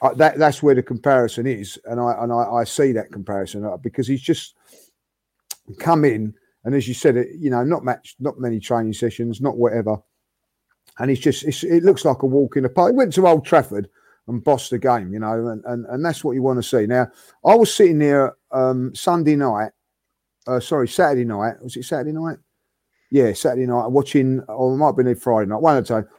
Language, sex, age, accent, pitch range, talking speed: English, male, 40-59, British, 110-140 Hz, 220 wpm